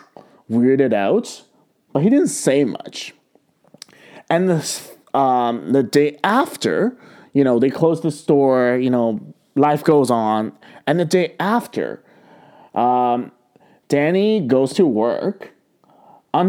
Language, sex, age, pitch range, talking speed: English, male, 20-39, 110-150 Hz, 125 wpm